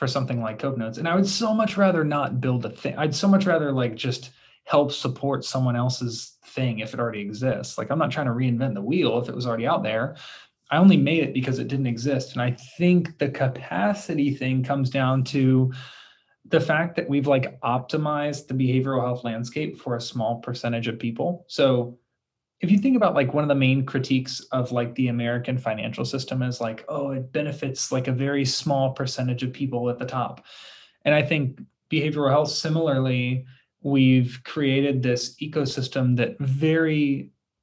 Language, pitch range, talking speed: English, 125-145 Hz, 195 wpm